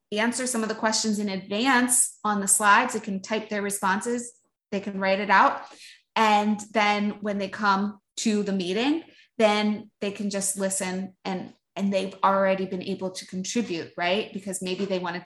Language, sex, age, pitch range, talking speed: English, female, 20-39, 185-210 Hz, 180 wpm